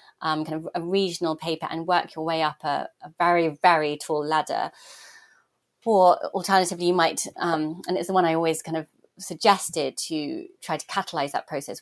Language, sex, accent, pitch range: English, female, British, 155-195 Hz